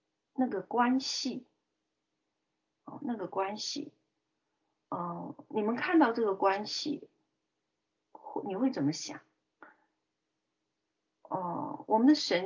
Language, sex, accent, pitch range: Chinese, female, native, 190-275 Hz